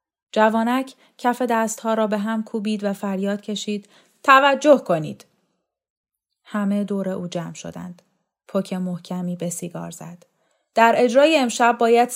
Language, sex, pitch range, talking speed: Persian, female, 180-260 Hz, 130 wpm